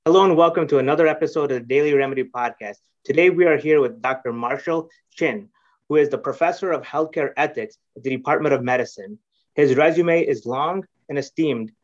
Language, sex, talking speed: English, male, 190 wpm